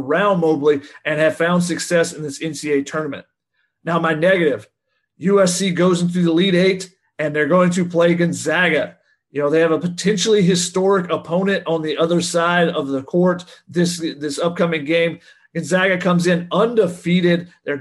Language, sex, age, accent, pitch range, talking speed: English, male, 40-59, American, 160-185 Hz, 165 wpm